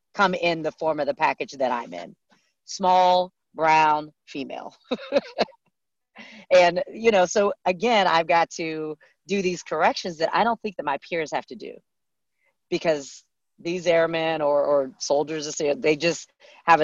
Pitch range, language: 145-190 Hz, English